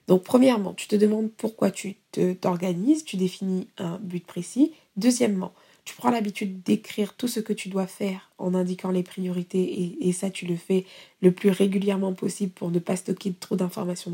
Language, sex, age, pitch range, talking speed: French, female, 20-39, 185-230 Hz, 190 wpm